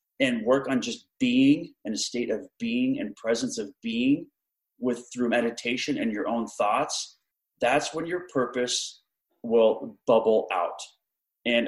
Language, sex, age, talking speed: English, male, 30-49, 150 wpm